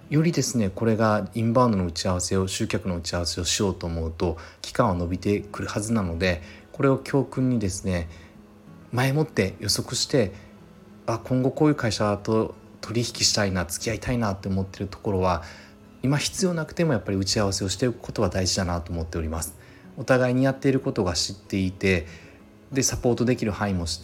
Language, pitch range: Japanese, 90-115 Hz